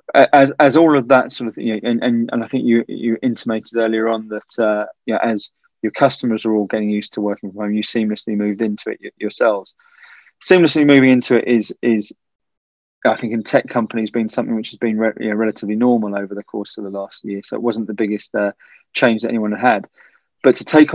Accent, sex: British, male